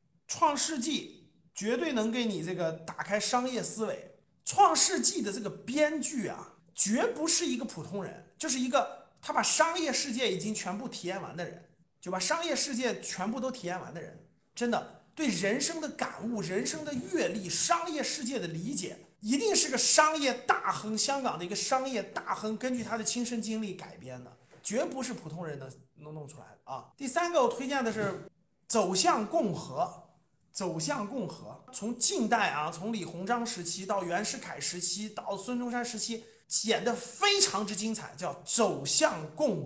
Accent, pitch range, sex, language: native, 180-255 Hz, male, Chinese